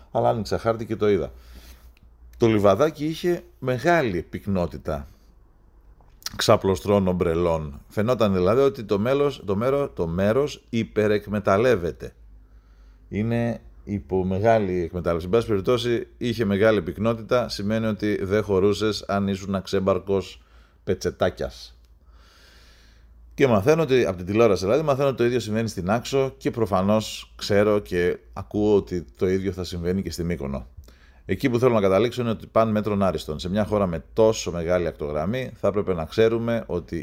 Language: Greek